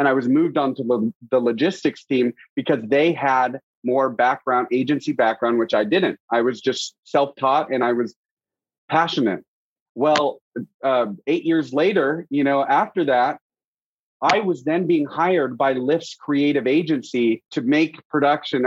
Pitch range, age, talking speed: 125-155 Hz, 30-49, 155 wpm